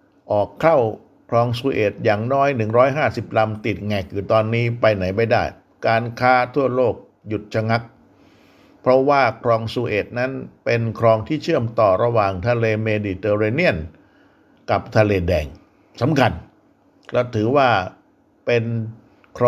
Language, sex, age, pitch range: Thai, male, 60-79, 105-145 Hz